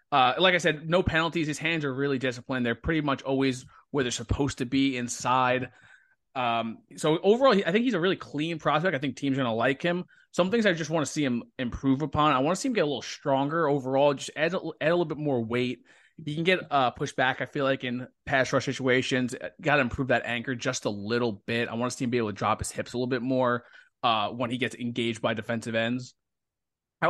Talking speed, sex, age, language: 250 wpm, male, 20-39, English